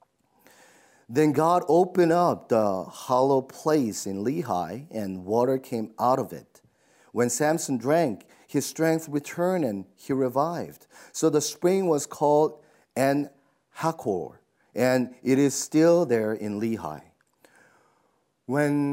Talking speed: 120 wpm